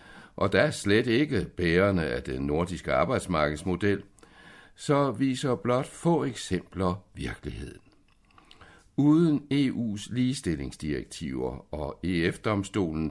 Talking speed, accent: 90 wpm, native